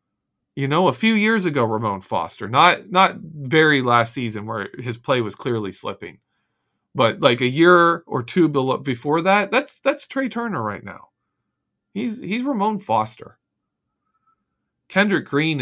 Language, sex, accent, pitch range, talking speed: English, male, American, 120-200 Hz, 155 wpm